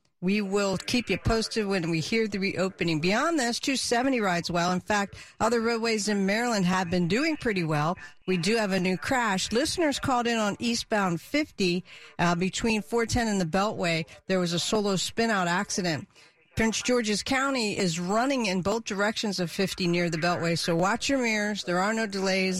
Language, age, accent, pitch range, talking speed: English, 50-69, American, 180-235 Hz, 190 wpm